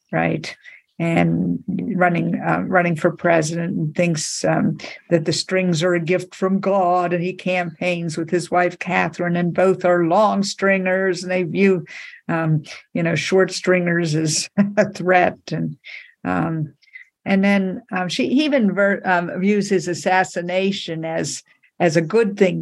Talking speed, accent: 155 wpm, American